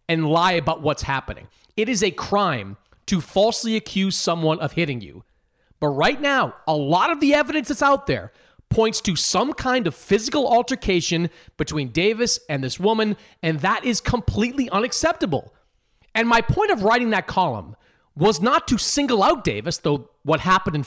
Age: 30-49